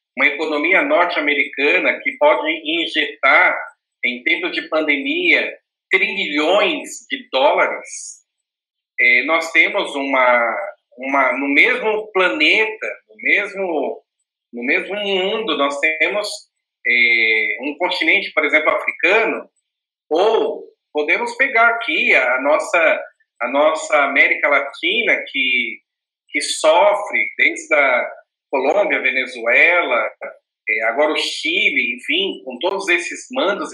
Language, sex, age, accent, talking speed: Portuguese, male, 40-59, Brazilian, 105 wpm